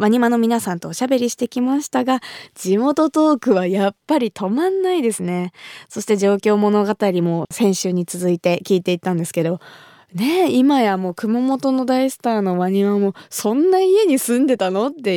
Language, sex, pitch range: Japanese, female, 185-255 Hz